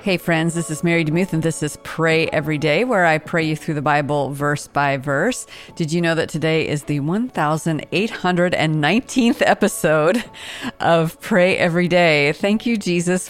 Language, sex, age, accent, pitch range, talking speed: English, female, 40-59, American, 150-180 Hz, 170 wpm